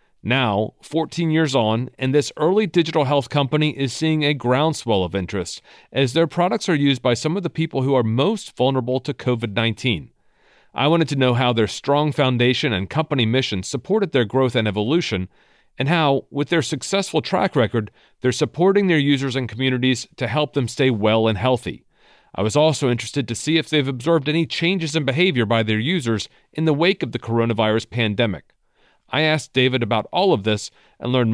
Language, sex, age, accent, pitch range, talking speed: English, male, 40-59, American, 120-155 Hz, 190 wpm